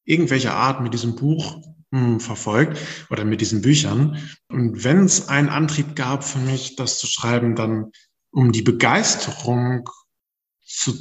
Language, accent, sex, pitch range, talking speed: German, German, male, 110-140 Hz, 140 wpm